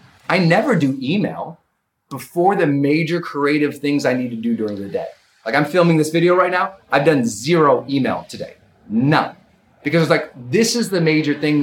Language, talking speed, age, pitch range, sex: English, 190 wpm, 30-49, 135-180 Hz, male